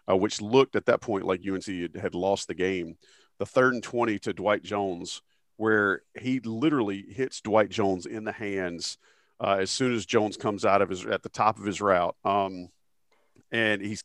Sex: male